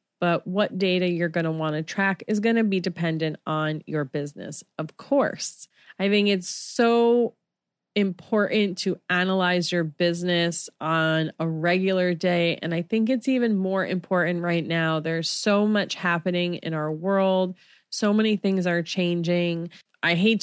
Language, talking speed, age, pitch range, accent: English, 160 wpm, 30-49, 160-190 Hz, American